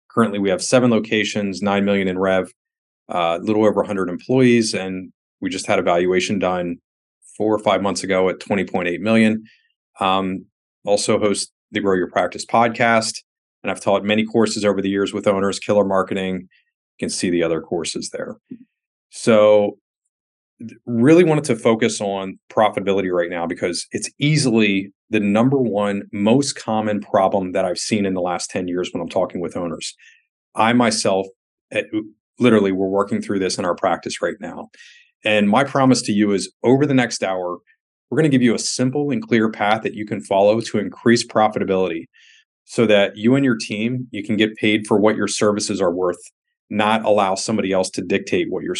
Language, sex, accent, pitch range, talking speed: English, male, American, 95-115 Hz, 185 wpm